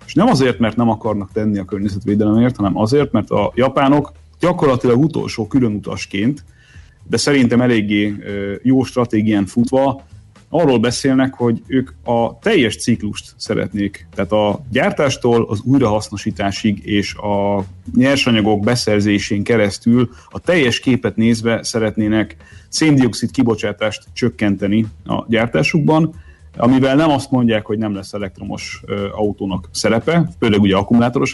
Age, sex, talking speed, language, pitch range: 30-49, male, 125 wpm, Hungarian, 100-125 Hz